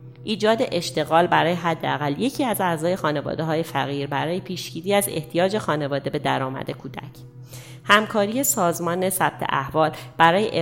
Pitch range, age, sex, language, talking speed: 140-175 Hz, 30-49, female, Persian, 125 wpm